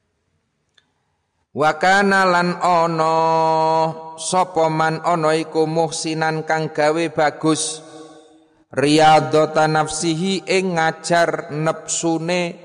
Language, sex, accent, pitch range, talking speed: Indonesian, male, native, 150-160 Hz, 75 wpm